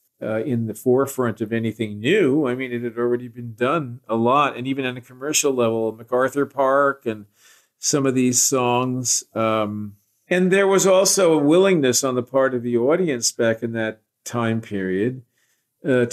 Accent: American